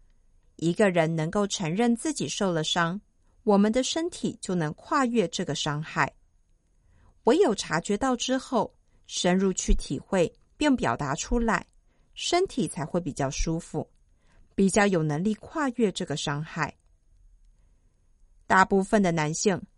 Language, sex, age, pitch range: Chinese, female, 50-69, 155-235 Hz